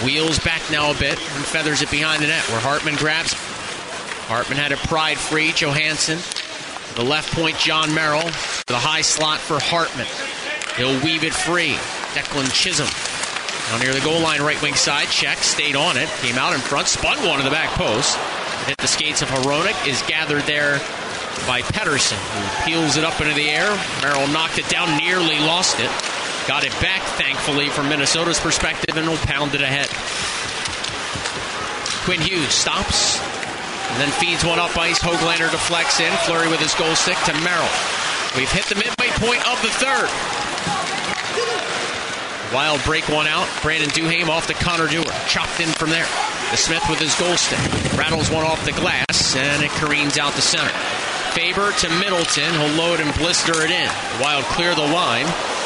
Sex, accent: male, American